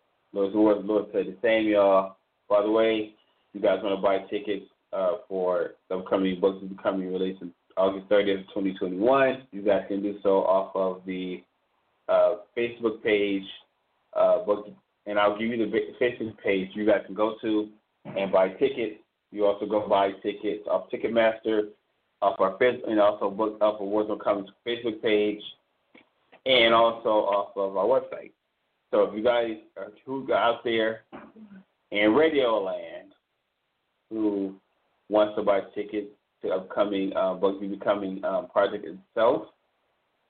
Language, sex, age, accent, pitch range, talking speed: English, male, 20-39, American, 95-115 Hz, 160 wpm